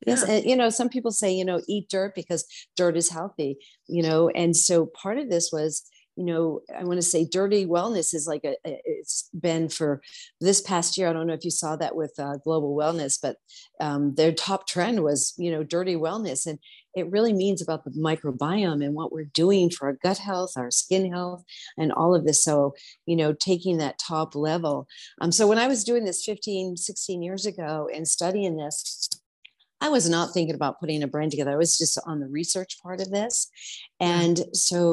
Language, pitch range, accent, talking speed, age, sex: English, 155-190 Hz, American, 215 wpm, 50-69, female